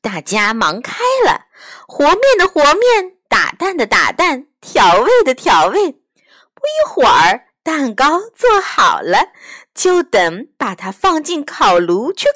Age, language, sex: 20-39, Chinese, female